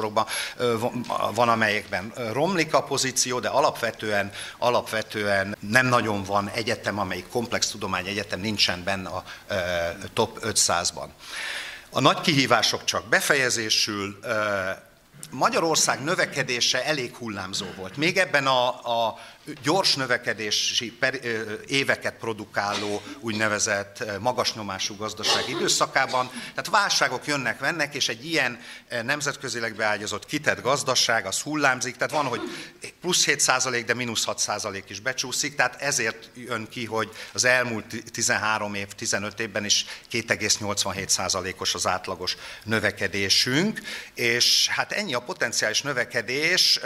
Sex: male